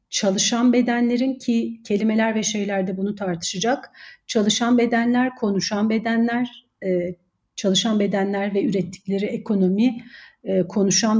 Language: Turkish